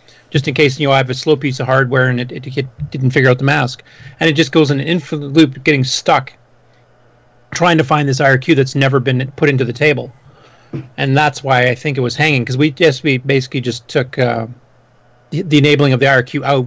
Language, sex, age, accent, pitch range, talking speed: English, male, 30-49, American, 125-150 Hz, 235 wpm